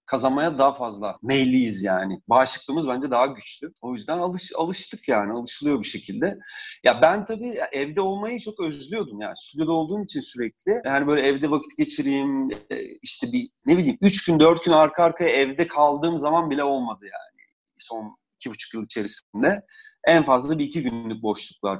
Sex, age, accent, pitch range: male, 40-59, native, 135-195 Hz